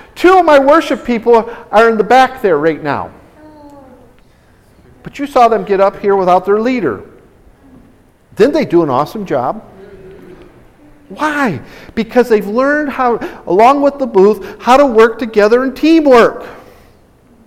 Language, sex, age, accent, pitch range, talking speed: English, male, 50-69, American, 180-245 Hz, 150 wpm